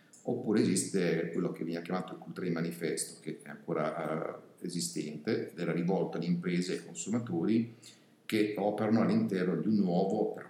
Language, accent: Italian, native